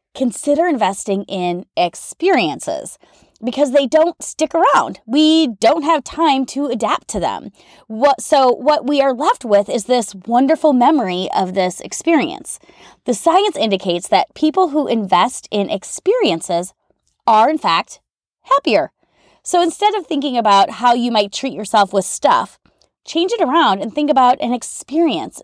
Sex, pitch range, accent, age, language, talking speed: female, 200-310 Hz, American, 30-49, English, 150 wpm